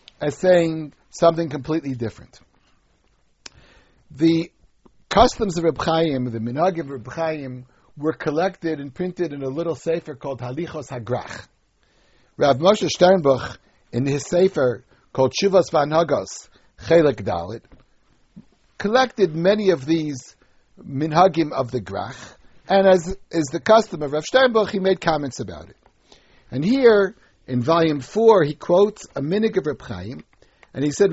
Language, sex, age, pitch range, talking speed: English, male, 60-79, 135-185 Hz, 145 wpm